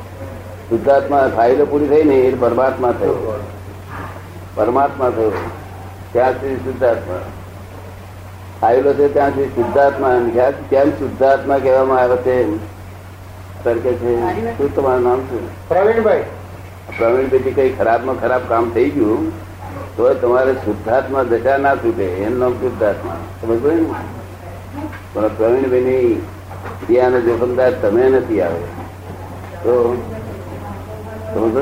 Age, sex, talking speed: 60-79, male, 75 wpm